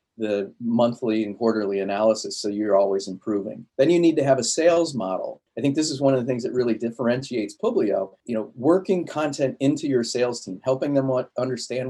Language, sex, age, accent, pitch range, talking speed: English, male, 40-59, American, 115-140 Hz, 200 wpm